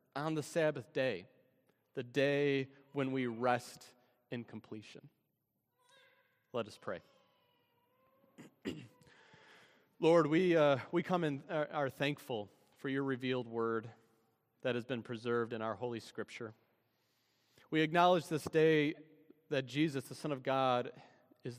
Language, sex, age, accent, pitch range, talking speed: English, male, 30-49, American, 115-150 Hz, 130 wpm